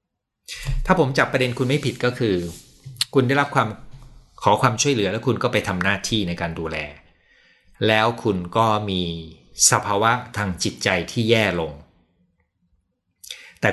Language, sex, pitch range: Thai, male, 95-125 Hz